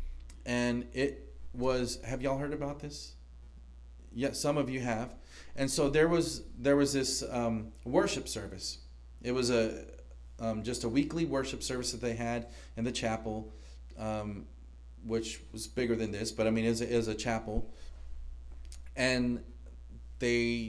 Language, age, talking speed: English, 40-59, 155 wpm